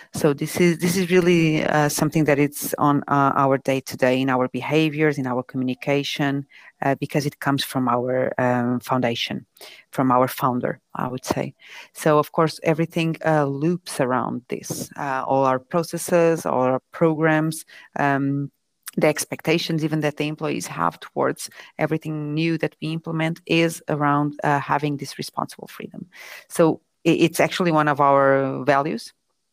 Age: 30-49